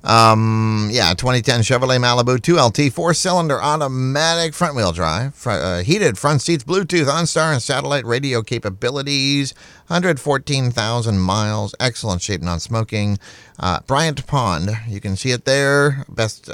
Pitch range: 100-145 Hz